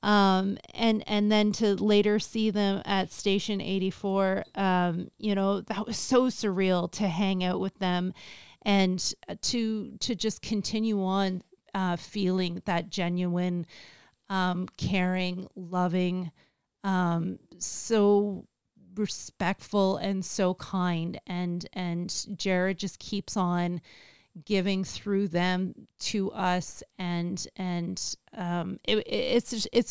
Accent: American